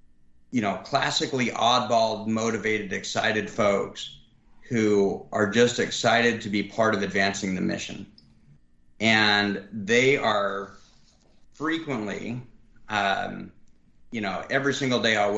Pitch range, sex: 100-120 Hz, male